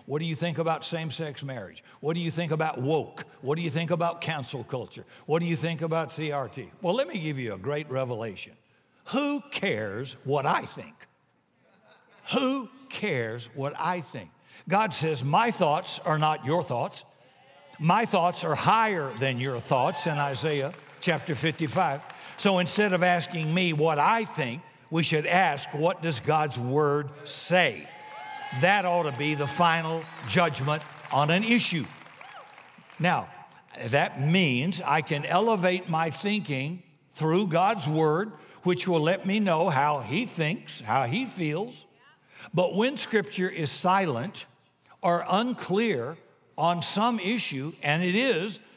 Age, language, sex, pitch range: 60-79, English, male, 150-185 Hz